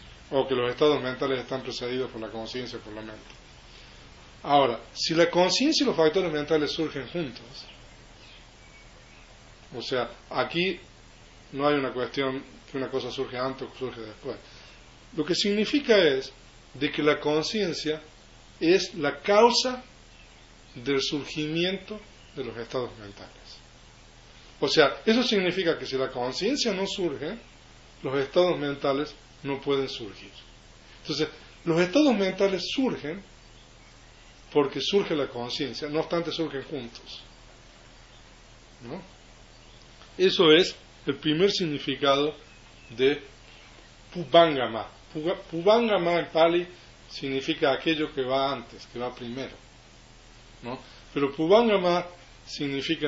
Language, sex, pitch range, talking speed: Spanish, male, 125-170 Hz, 125 wpm